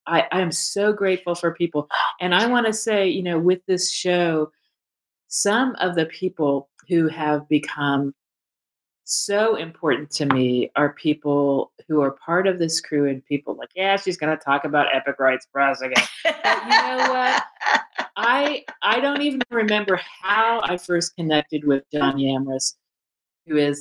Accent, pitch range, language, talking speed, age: American, 135-175 Hz, English, 170 wpm, 40-59